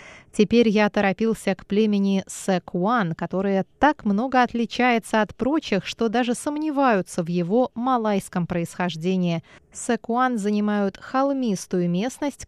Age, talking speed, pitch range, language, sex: 20-39, 110 wpm, 185-250 Hz, Russian, female